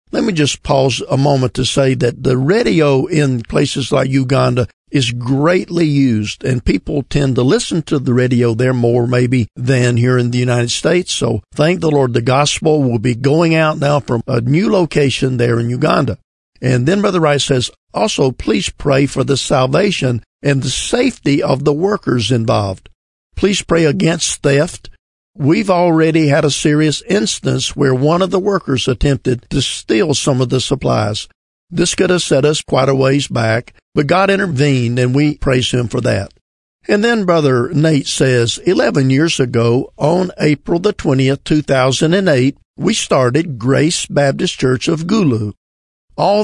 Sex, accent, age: male, American, 50-69